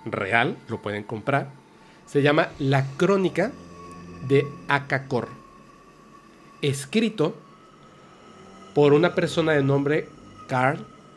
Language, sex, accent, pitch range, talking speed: Spanish, male, Mexican, 125-175 Hz, 90 wpm